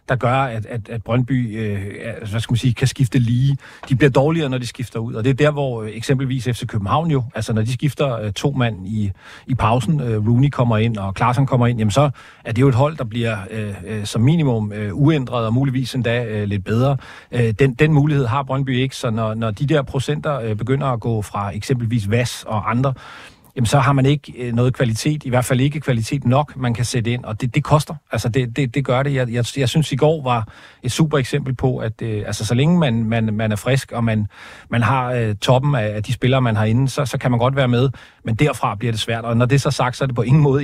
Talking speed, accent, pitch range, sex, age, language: 260 wpm, native, 115-135 Hz, male, 40-59, Danish